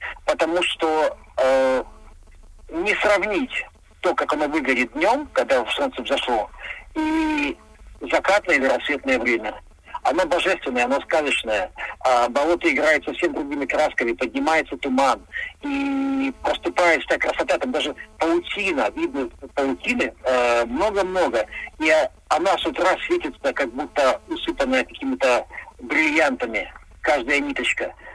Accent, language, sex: native, Russian, male